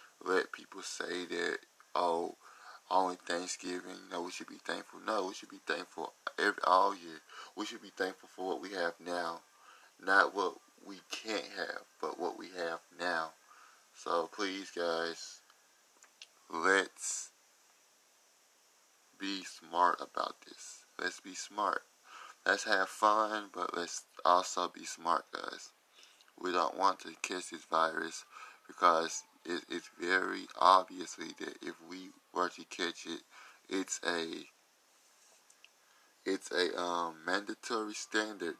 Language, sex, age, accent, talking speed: English, male, 20-39, American, 135 wpm